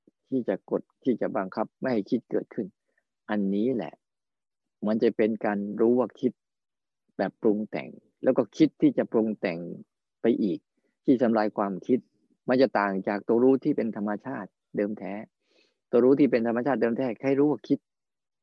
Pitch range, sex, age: 110-135 Hz, male, 20-39